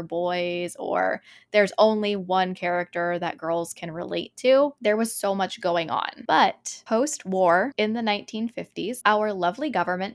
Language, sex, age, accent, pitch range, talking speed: English, female, 10-29, American, 180-215 Hz, 155 wpm